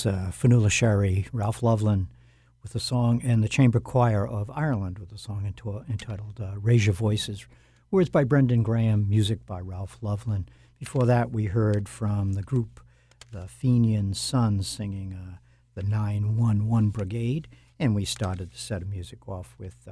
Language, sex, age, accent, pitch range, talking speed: English, male, 60-79, American, 95-120 Hz, 170 wpm